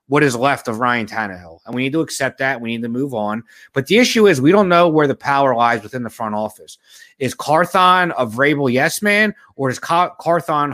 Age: 30-49